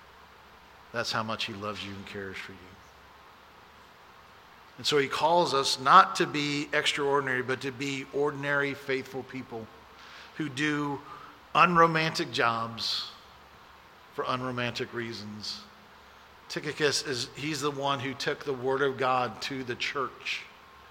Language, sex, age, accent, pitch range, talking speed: English, male, 50-69, American, 110-150 Hz, 130 wpm